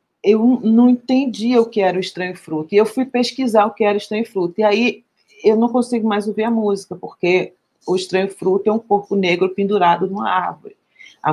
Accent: Brazilian